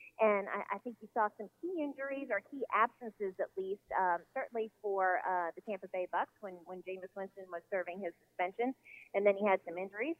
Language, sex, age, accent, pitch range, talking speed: English, female, 30-49, American, 190-230 Hz, 210 wpm